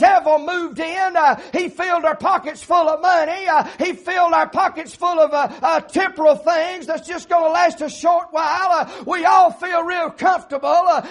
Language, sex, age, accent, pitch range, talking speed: English, male, 50-69, American, 300-360 Hz, 200 wpm